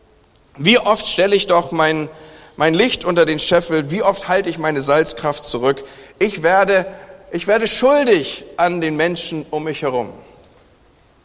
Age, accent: 40-59, German